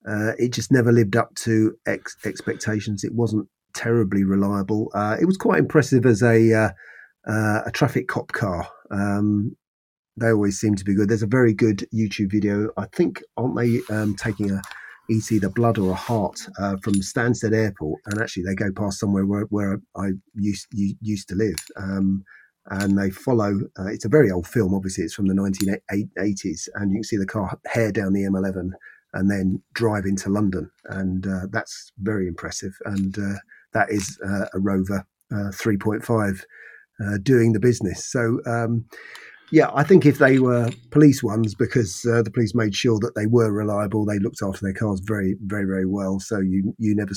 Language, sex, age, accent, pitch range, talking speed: English, male, 30-49, British, 100-115 Hz, 190 wpm